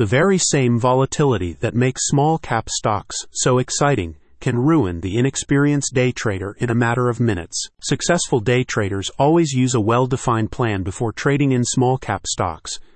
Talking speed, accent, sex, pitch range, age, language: 155 wpm, American, male, 110-135 Hz, 40-59, English